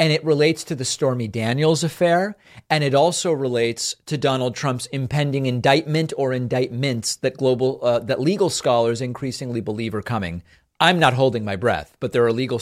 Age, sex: 40-59, male